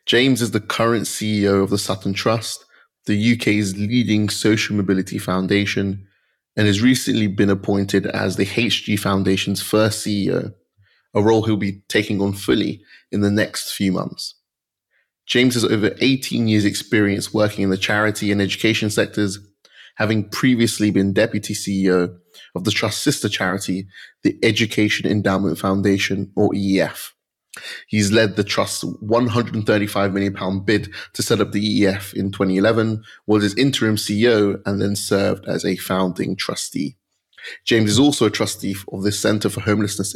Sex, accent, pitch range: male, British, 100-110 Hz